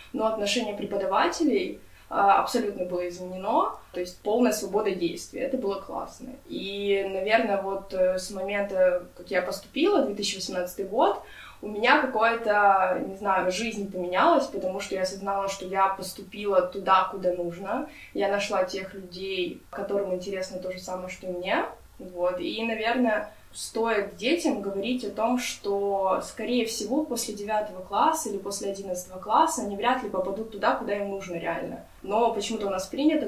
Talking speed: 155 wpm